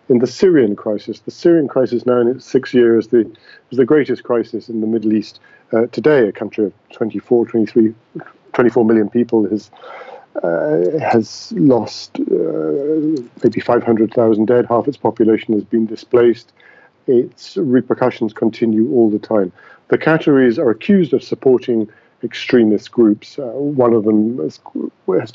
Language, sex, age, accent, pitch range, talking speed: English, male, 50-69, British, 110-125 Hz, 155 wpm